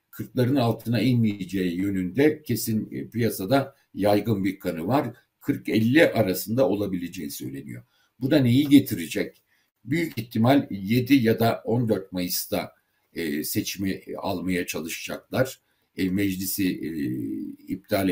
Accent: native